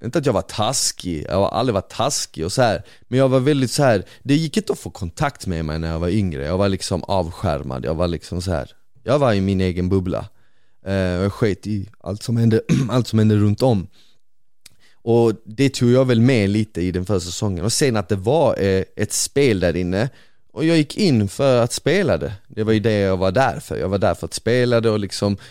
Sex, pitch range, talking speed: male, 100-125 Hz, 250 wpm